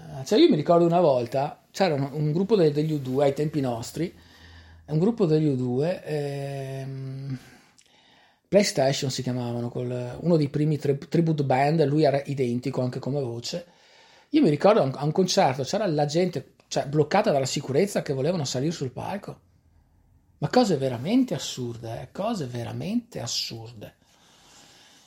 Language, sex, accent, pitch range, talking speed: Italian, male, native, 130-175 Hz, 155 wpm